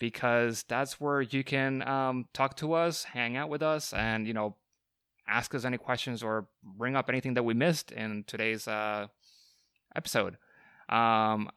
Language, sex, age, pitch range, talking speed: English, male, 20-39, 110-135 Hz, 165 wpm